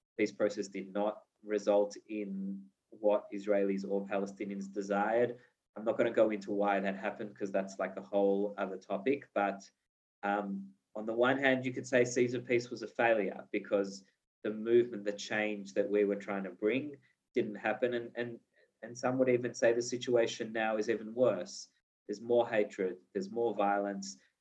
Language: English